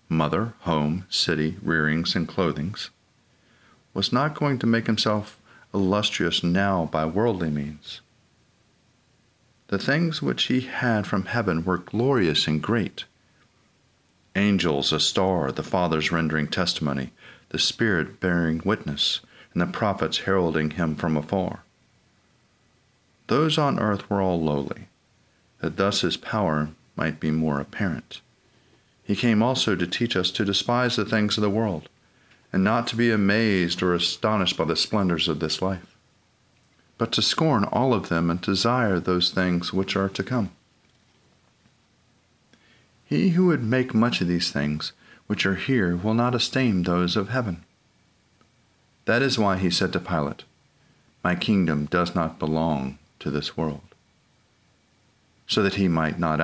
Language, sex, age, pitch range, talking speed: English, male, 50-69, 80-110 Hz, 145 wpm